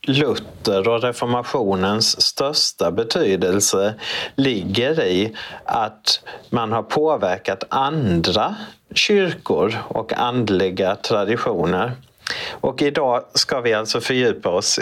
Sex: male